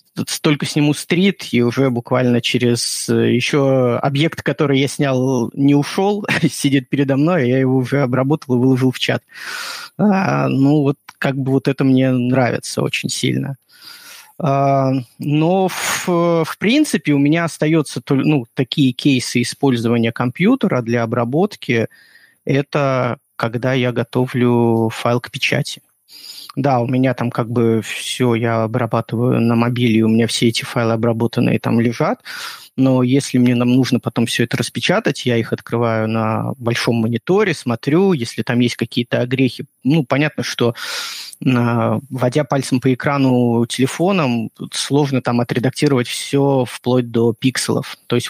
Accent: native